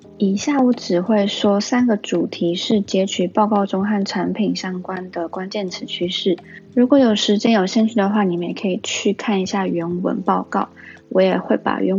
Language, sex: Chinese, female